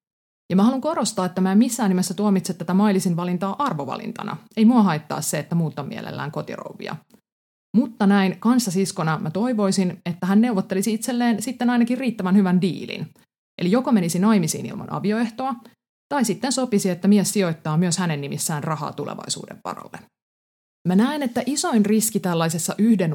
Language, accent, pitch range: Finnish, native, 160-215 Hz